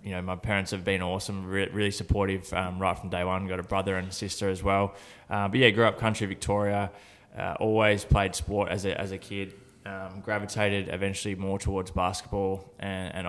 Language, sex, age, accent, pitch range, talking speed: English, male, 20-39, Australian, 95-105 Hz, 210 wpm